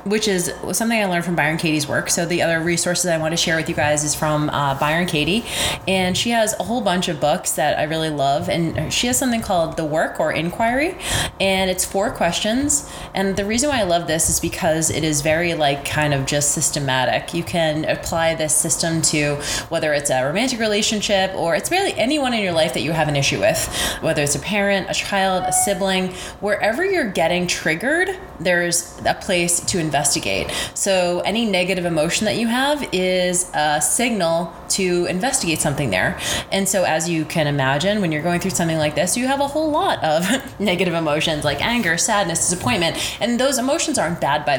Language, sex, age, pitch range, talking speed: English, female, 20-39, 155-205 Hz, 205 wpm